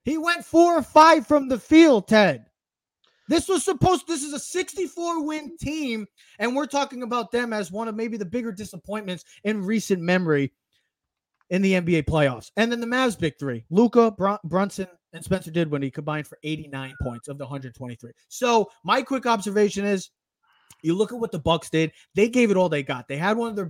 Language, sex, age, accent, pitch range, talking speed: English, male, 20-39, American, 145-220 Hz, 205 wpm